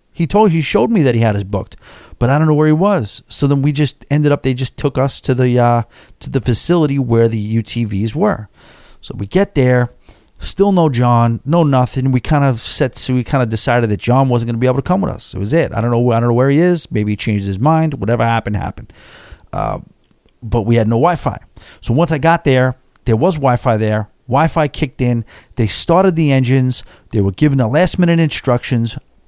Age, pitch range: 40-59, 110-145 Hz